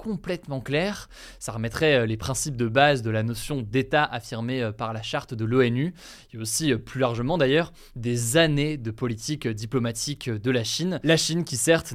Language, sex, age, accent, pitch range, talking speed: French, male, 20-39, French, 120-150 Hz, 175 wpm